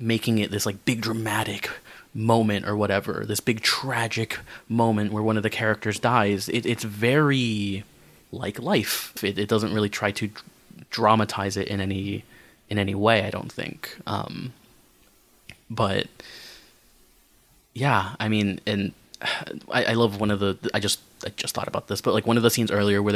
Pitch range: 100-115 Hz